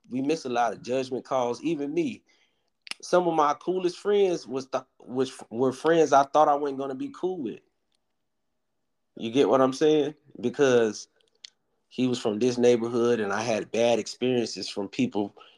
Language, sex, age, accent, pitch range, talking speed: English, male, 30-49, American, 115-140 Hz, 175 wpm